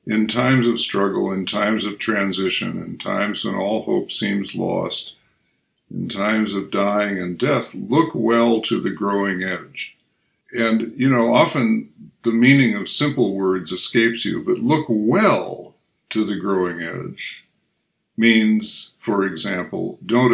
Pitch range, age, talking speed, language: 95-120 Hz, 60-79, 145 wpm, English